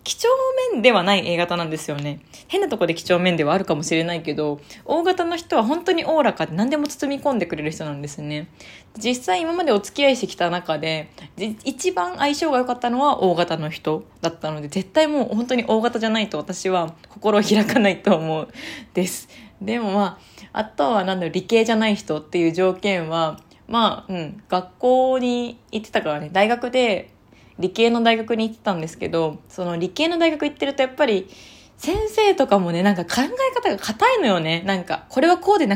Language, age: Japanese, 20-39